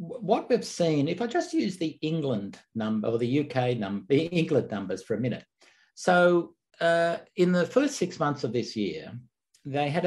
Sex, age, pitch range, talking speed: male, 60-79, 120-170 Hz, 190 wpm